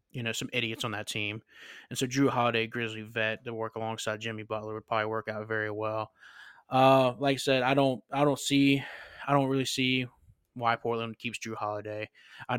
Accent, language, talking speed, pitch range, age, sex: American, English, 205 wpm, 110-125 Hz, 20-39, male